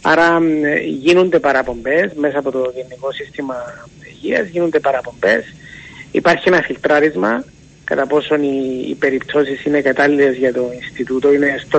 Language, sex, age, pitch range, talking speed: Greek, male, 30-49, 140-160 Hz, 125 wpm